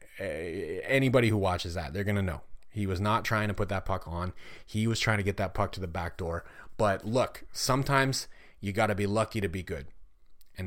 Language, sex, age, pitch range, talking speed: English, male, 30-49, 95-115 Hz, 230 wpm